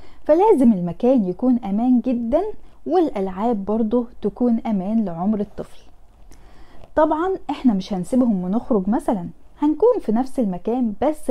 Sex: female